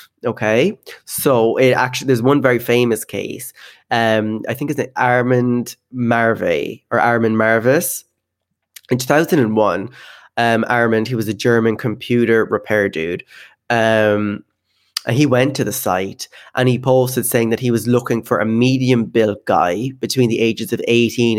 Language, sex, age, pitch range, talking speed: English, male, 20-39, 115-125 Hz, 145 wpm